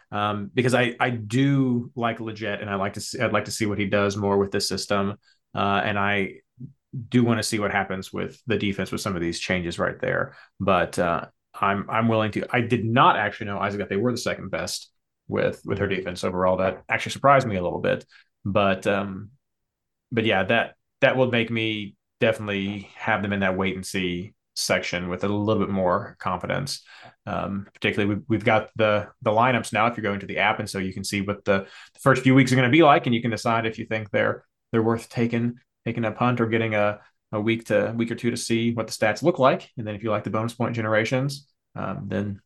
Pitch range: 100-125 Hz